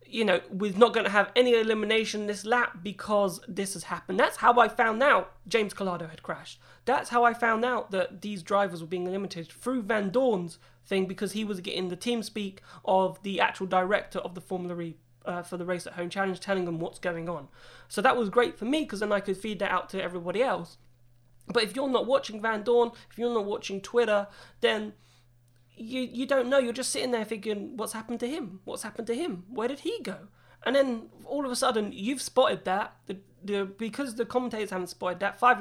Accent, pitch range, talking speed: British, 180-235 Hz, 225 wpm